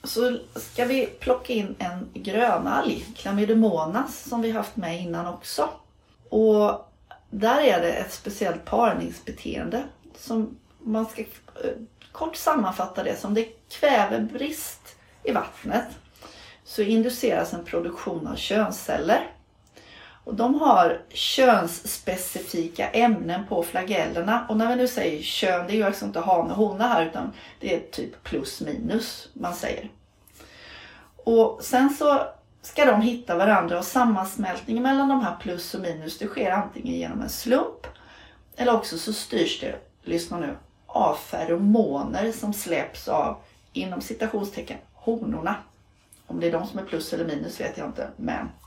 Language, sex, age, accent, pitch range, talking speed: Swedish, female, 40-59, native, 190-245 Hz, 145 wpm